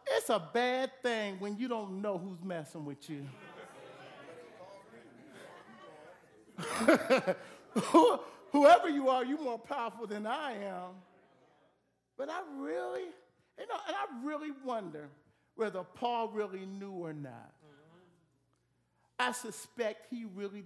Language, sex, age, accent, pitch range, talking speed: English, male, 50-69, American, 175-255 Hz, 115 wpm